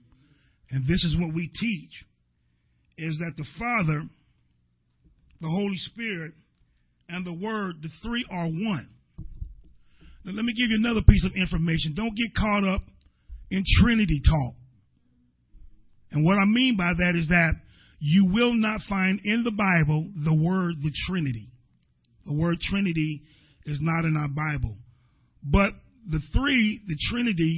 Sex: male